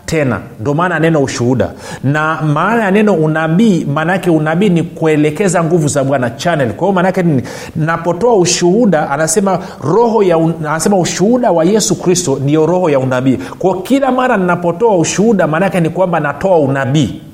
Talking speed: 150 wpm